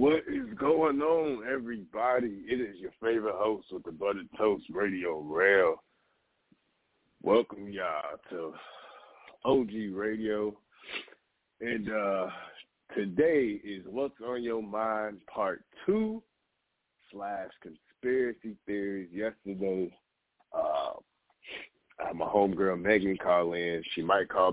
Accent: American